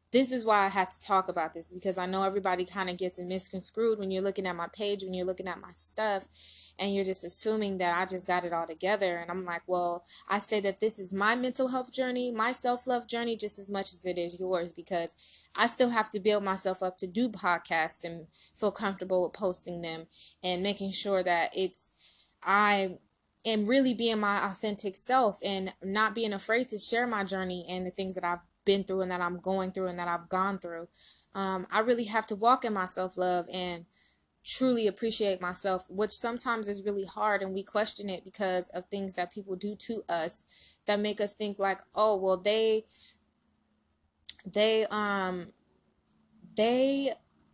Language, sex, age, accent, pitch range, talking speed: English, female, 20-39, American, 180-215 Hz, 200 wpm